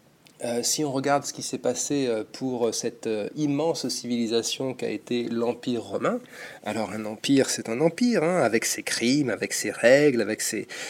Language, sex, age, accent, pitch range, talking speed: French, male, 40-59, French, 110-140 Hz, 180 wpm